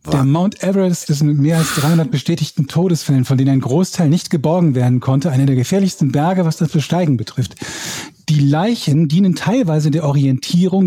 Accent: German